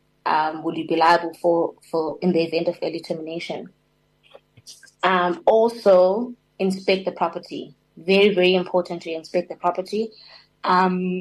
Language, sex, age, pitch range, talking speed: English, female, 20-39, 170-195 Hz, 140 wpm